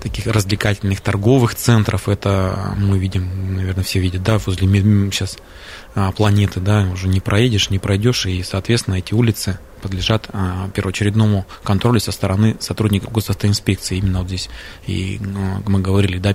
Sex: male